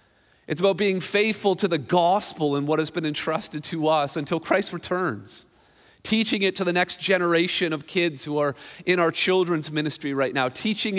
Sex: male